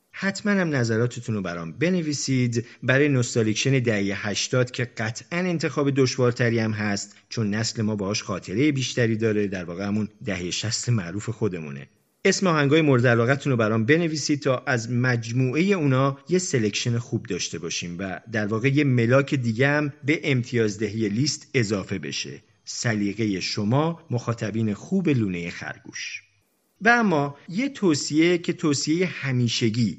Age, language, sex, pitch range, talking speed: 40-59, Persian, male, 110-150 Hz, 140 wpm